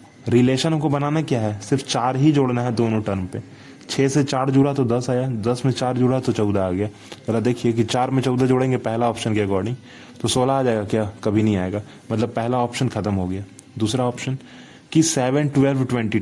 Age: 20-39